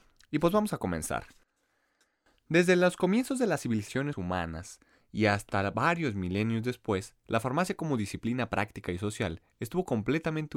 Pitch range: 95-130 Hz